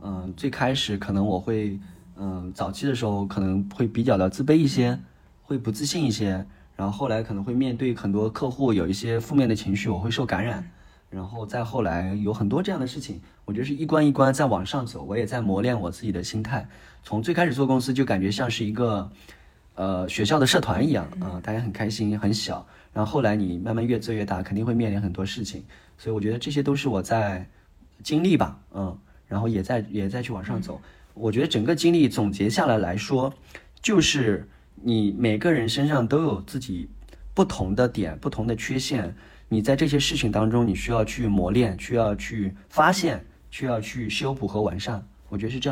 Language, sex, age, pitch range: Chinese, male, 20-39, 100-130 Hz